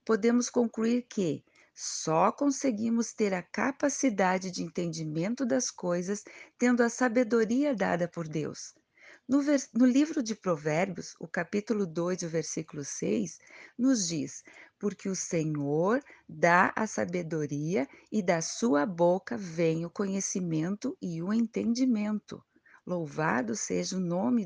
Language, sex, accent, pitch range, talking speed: Portuguese, female, Brazilian, 170-250 Hz, 125 wpm